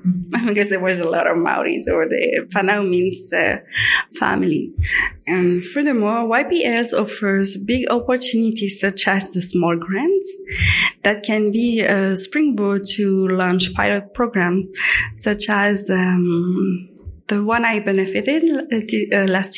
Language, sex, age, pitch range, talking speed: English, female, 20-39, 190-230 Hz, 130 wpm